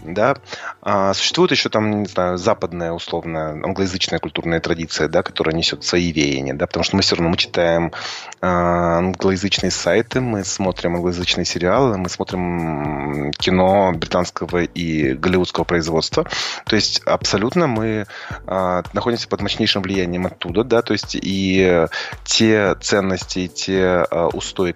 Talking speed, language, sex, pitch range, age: 135 wpm, Russian, male, 85-100 Hz, 20-39